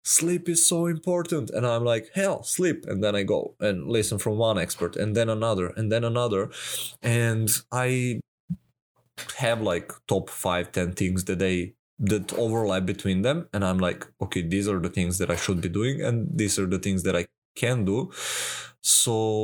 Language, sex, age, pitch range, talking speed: English, male, 20-39, 100-120 Hz, 190 wpm